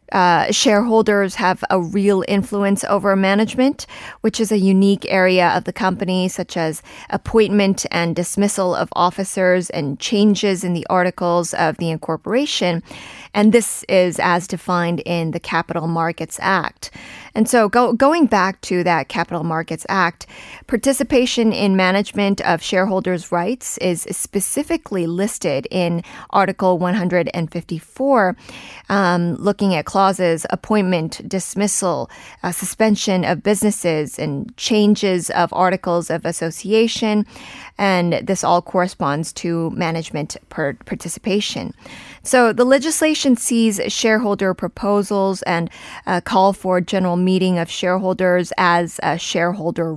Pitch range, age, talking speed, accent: 175-210 Hz, 20-39, 120 wpm, American